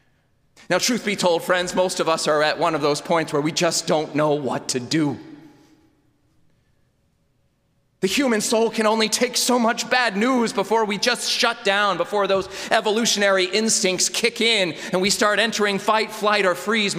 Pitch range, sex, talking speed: 160-215 Hz, male, 180 wpm